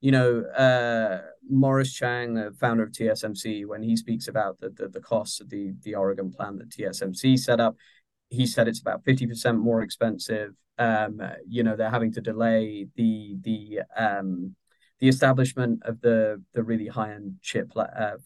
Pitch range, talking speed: 110-130 Hz, 175 wpm